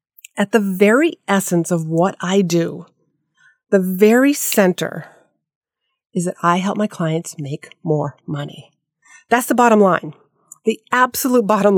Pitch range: 170-215 Hz